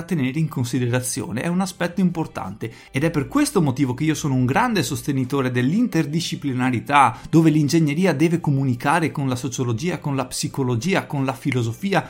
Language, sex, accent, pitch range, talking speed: Italian, male, native, 130-175 Hz, 160 wpm